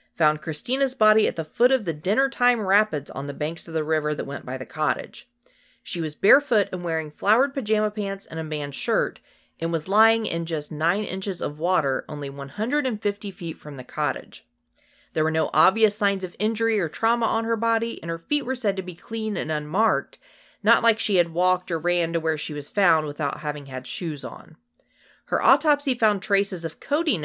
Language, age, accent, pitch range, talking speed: English, 40-59, American, 150-225 Hz, 205 wpm